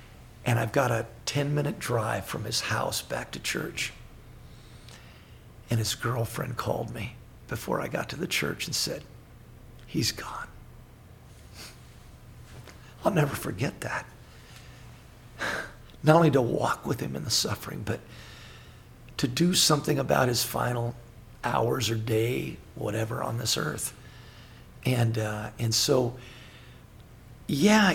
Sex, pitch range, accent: male, 115-130 Hz, American